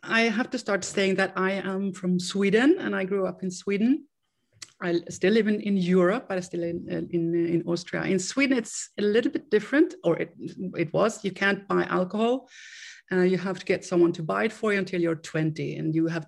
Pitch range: 165-200 Hz